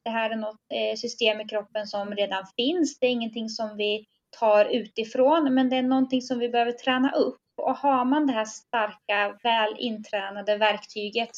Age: 20-39